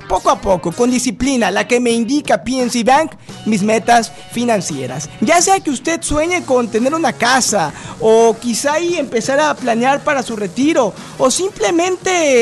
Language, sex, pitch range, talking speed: Spanish, male, 215-290 Hz, 165 wpm